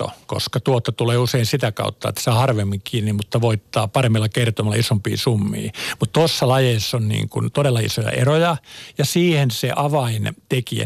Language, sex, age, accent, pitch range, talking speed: Finnish, male, 50-69, native, 110-130 Hz, 155 wpm